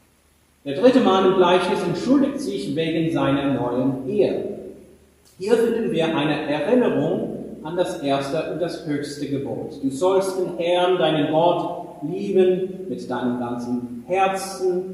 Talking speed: 135 wpm